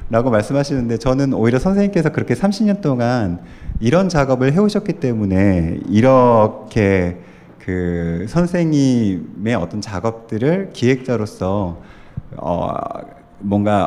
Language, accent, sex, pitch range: Korean, native, male, 100-140 Hz